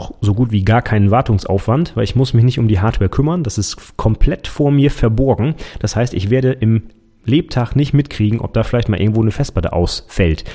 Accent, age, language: German, 30-49, German